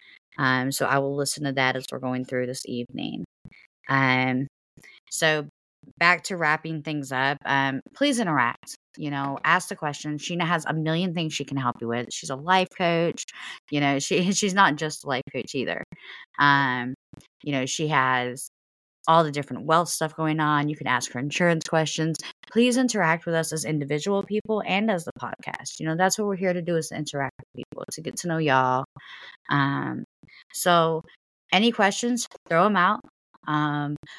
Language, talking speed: English, 190 wpm